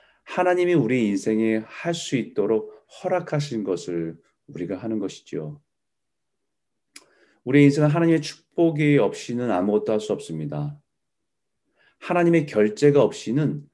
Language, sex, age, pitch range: Korean, male, 30-49, 110-155 Hz